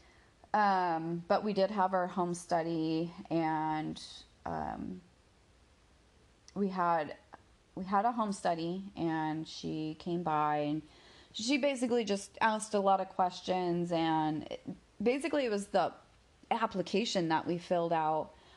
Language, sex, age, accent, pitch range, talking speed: English, female, 30-49, American, 155-180 Hz, 135 wpm